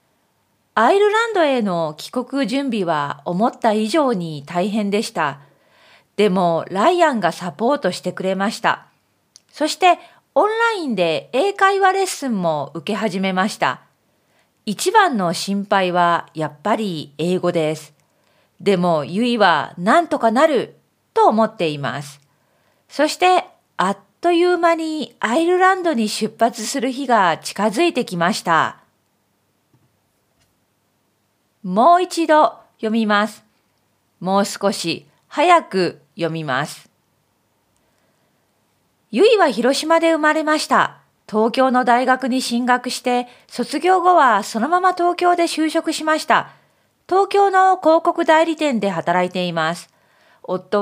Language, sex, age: Japanese, female, 40-59